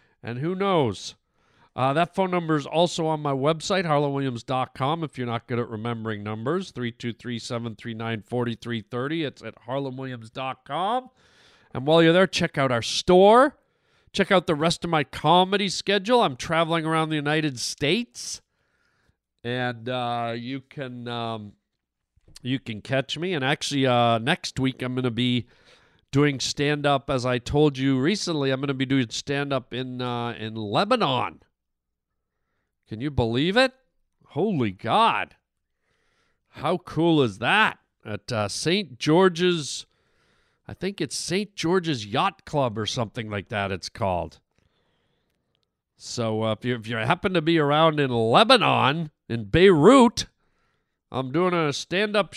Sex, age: male, 40-59